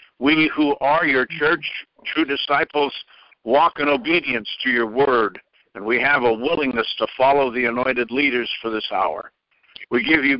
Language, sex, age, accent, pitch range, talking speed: English, male, 60-79, American, 120-145 Hz, 165 wpm